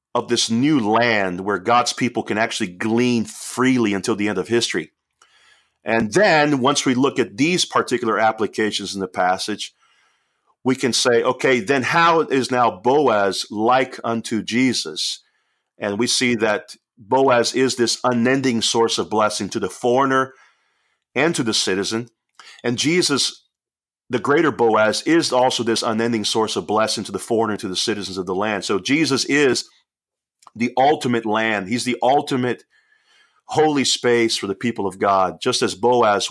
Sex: male